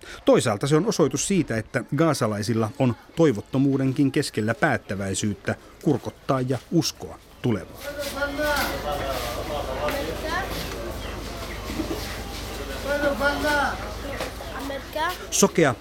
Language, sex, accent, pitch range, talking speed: Finnish, male, native, 105-155 Hz, 60 wpm